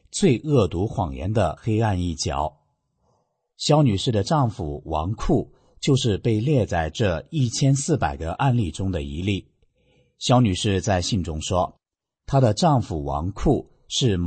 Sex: male